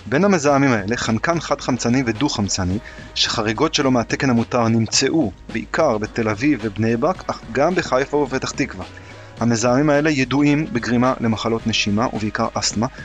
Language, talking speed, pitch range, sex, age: Hebrew, 135 wpm, 110-130 Hz, male, 30-49